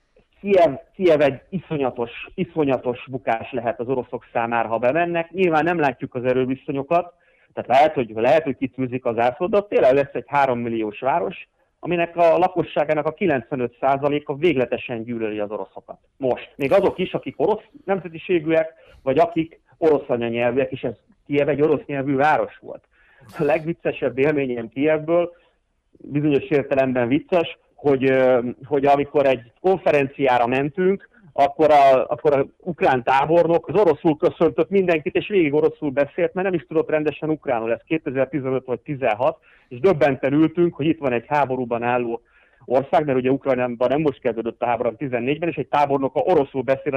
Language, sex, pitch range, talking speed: Hungarian, male, 125-165 Hz, 155 wpm